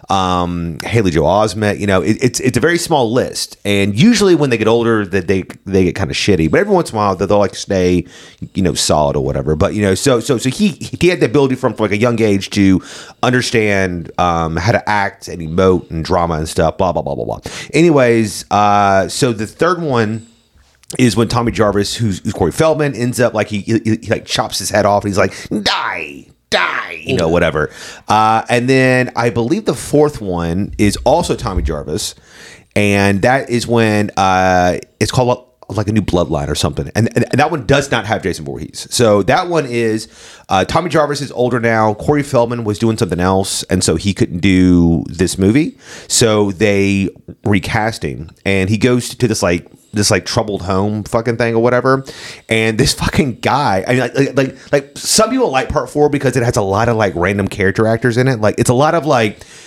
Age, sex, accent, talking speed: 30-49, male, American, 220 wpm